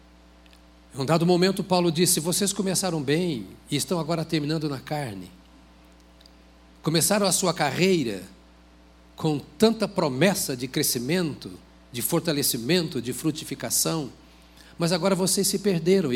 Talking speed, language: 125 wpm, Portuguese